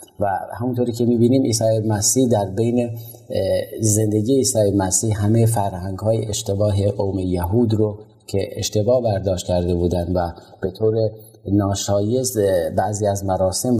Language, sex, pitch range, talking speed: Persian, male, 95-110 Hz, 130 wpm